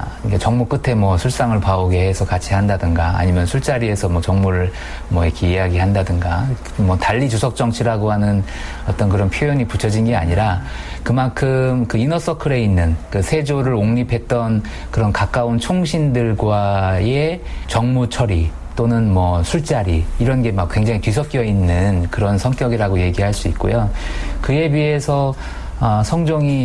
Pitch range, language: 90-120 Hz, Korean